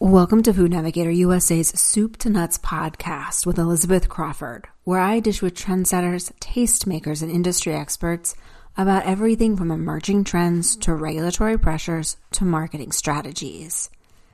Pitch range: 165-205 Hz